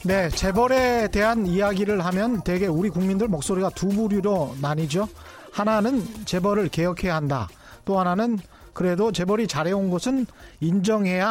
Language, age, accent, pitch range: Korean, 30-49, native, 180-235 Hz